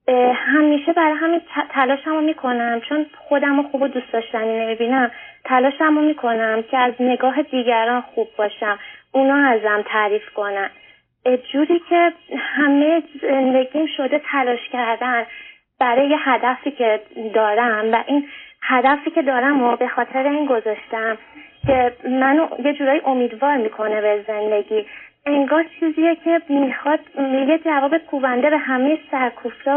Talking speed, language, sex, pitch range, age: 135 wpm, Persian, female, 230-290 Hz, 20-39